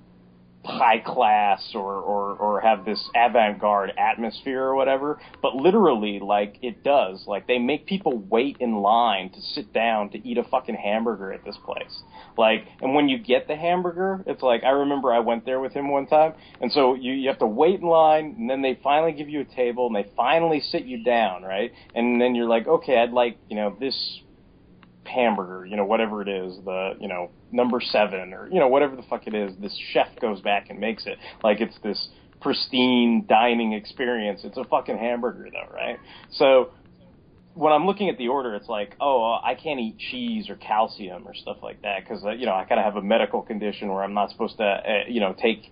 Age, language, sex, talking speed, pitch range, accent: 30-49, English, male, 215 wpm, 105-145 Hz, American